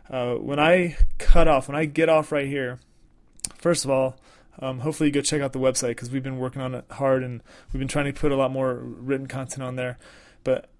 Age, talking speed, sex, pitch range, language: 20-39, 240 wpm, male, 130-160 Hz, English